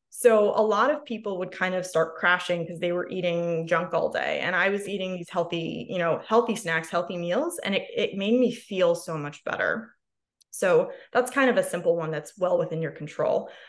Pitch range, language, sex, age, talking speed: 180-245 Hz, English, female, 20-39, 220 wpm